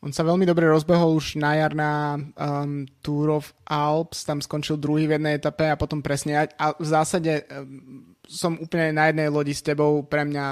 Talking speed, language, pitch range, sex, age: 195 wpm, Slovak, 140-155 Hz, male, 20-39